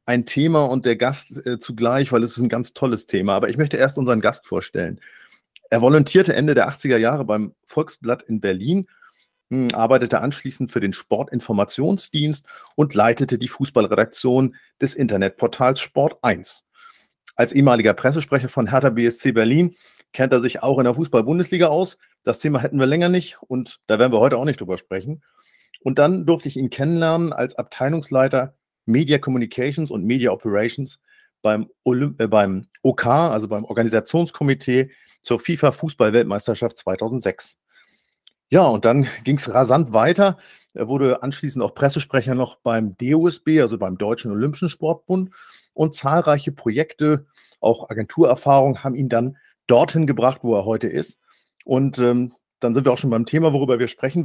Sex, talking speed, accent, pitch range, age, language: male, 155 wpm, German, 120-150 Hz, 40-59, German